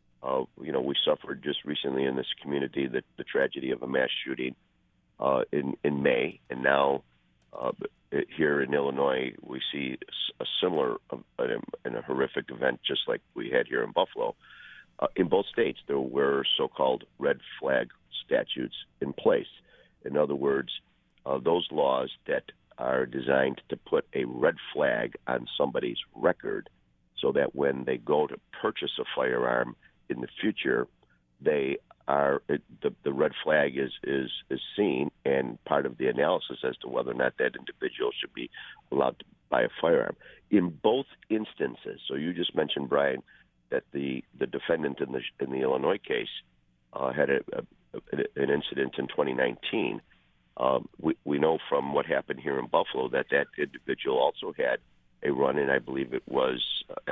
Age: 50-69